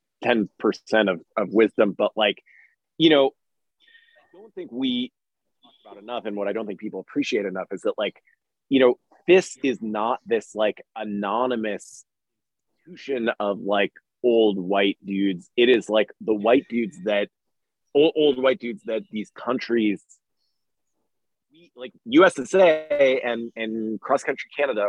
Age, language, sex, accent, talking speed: 20-39, English, male, American, 150 wpm